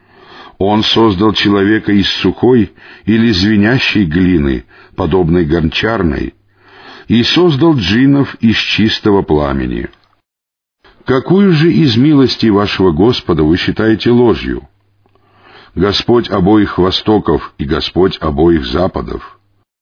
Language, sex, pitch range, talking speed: Russian, male, 95-130 Hz, 95 wpm